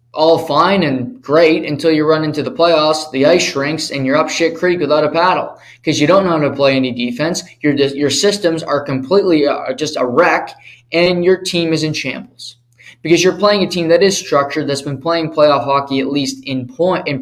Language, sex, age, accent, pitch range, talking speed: English, male, 20-39, American, 130-165 Hz, 220 wpm